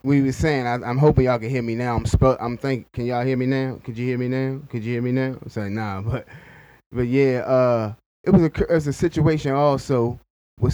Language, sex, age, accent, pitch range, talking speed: English, male, 10-29, American, 115-145 Hz, 255 wpm